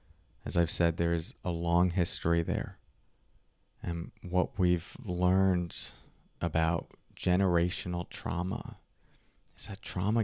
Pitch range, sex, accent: 85-100 Hz, male, American